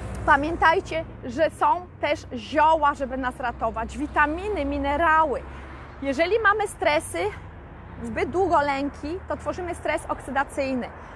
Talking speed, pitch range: 110 wpm, 275-340 Hz